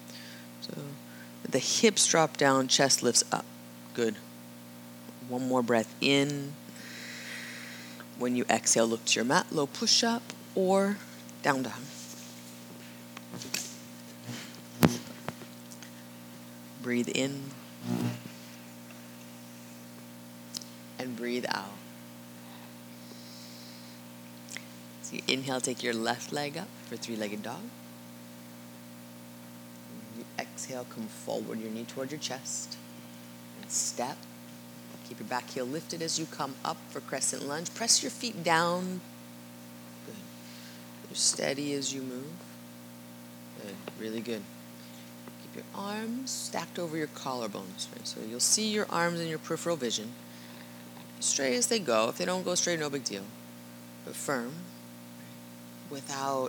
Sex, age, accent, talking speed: female, 30-49, American, 115 wpm